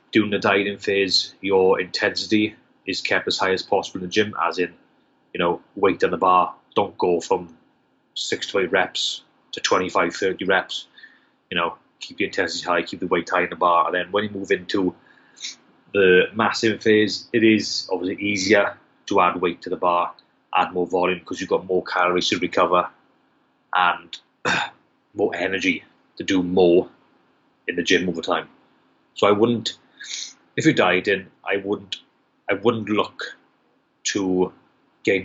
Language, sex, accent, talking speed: English, male, British, 170 wpm